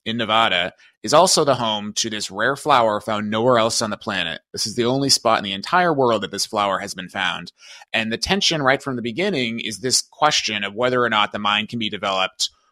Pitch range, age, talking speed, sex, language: 105-130 Hz, 30-49, 235 wpm, male, English